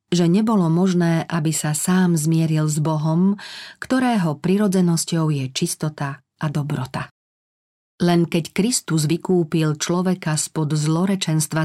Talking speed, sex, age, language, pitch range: 115 wpm, female, 40-59, Slovak, 155-190 Hz